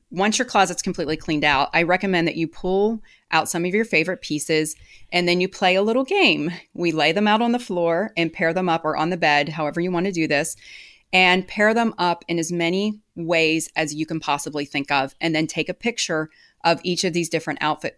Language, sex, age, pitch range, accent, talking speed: English, female, 30-49, 155-185 Hz, American, 235 wpm